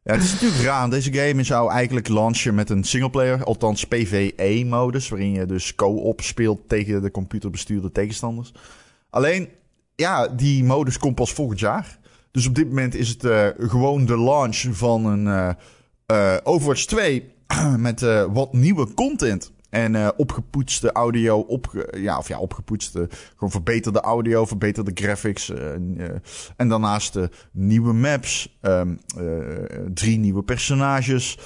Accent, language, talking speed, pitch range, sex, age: Dutch, Dutch, 155 wpm, 100-125 Hz, male, 20-39